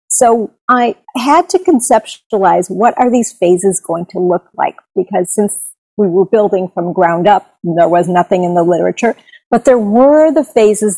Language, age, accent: English, 50-69, American